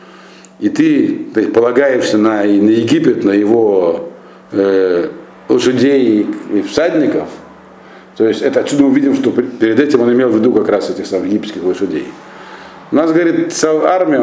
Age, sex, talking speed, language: 50-69, male, 150 wpm, Russian